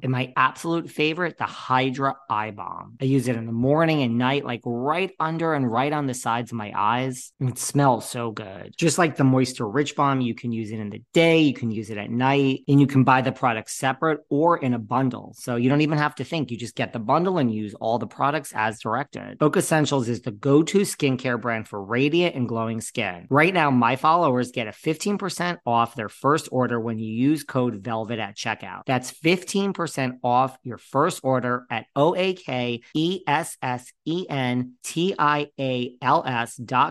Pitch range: 115-150 Hz